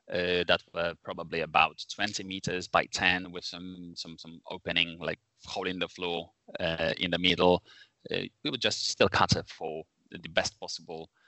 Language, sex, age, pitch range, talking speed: English, male, 20-39, 85-100 Hz, 175 wpm